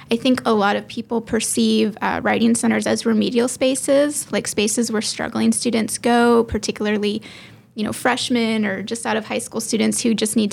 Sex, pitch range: female, 210-245 Hz